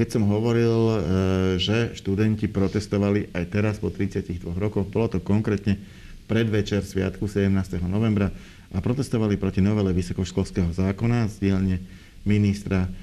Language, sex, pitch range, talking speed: Slovak, male, 95-105 Hz, 120 wpm